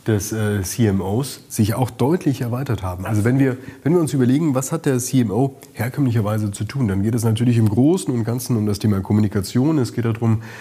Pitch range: 110-140 Hz